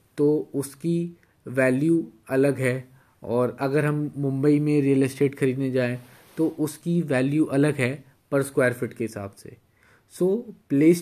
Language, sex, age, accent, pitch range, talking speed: Hindi, male, 20-39, native, 125-155 Hz, 145 wpm